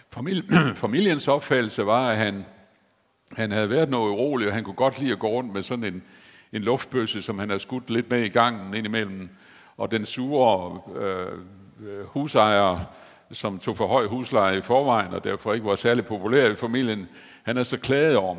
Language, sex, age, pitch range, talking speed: Danish, male, 60-79, 100-125 Hz, 185 wpm